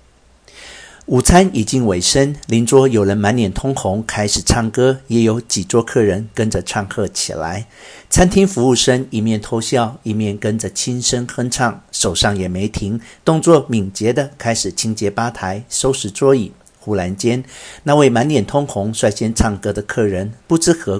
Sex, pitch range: male, 100-125 Hz